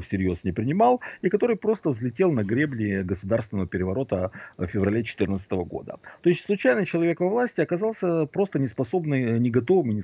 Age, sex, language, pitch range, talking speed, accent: 50-69, male, Russian, 100-155 Hz, 165 wpm, native